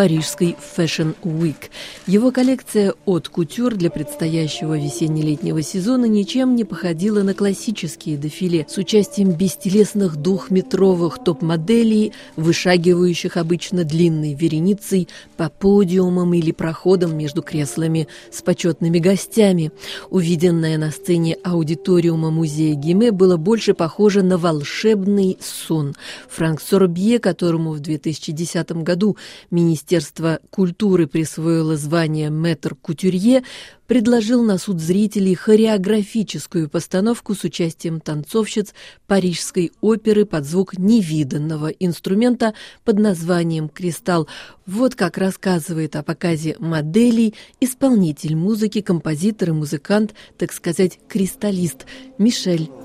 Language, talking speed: Russian, 105 wpm